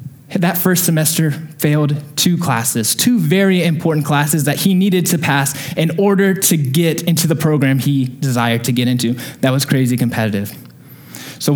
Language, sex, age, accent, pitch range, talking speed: English, male, 20-39, American, 135-170 Hz, 165 wpm